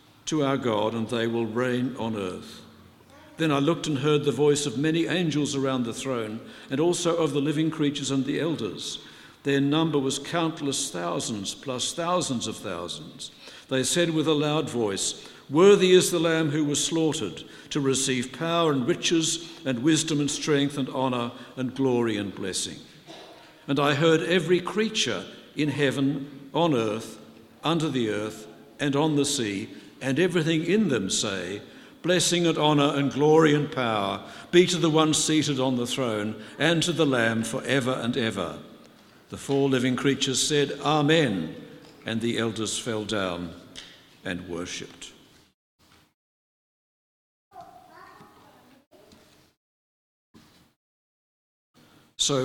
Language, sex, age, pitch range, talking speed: English, male, 60-79, 120-155 Hz, 145 wpm